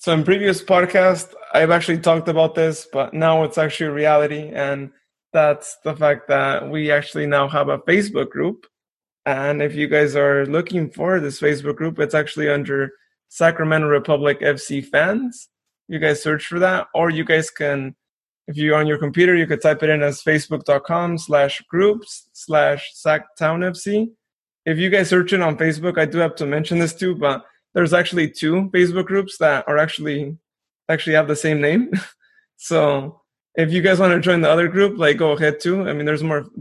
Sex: male